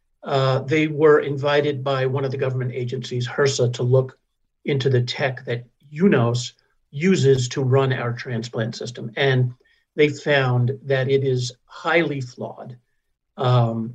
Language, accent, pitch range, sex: English, American, 120-145 Hz, male